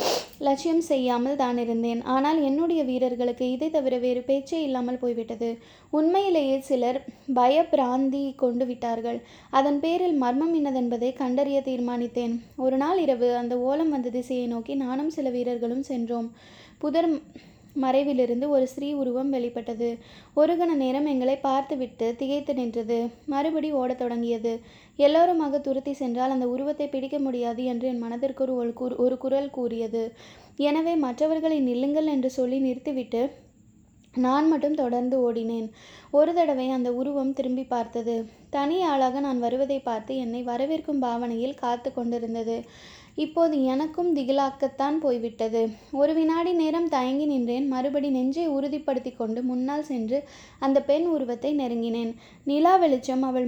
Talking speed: 120 wpm